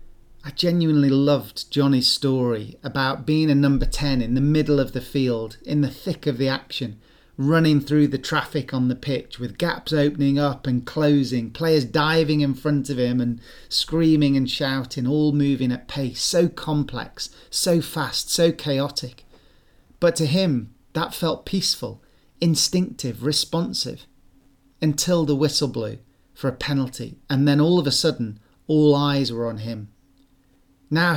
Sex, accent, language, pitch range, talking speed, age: male, British, English, 130-155 Hz, 160 wpm, 40-59